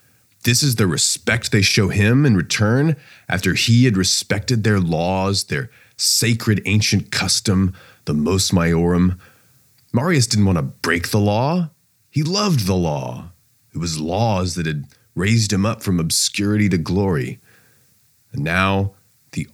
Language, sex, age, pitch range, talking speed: English, male, 30-49, 95-125 Hz, 145 wpm